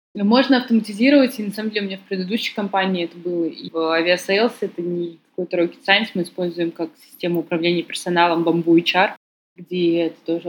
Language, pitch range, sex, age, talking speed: Russian, 170-215 Hz, female, 20-39, 185 wpm